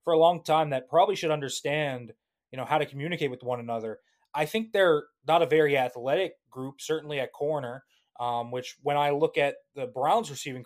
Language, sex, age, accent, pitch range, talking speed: English, male, 20-39, American, 135-175 Hz, 205 wpm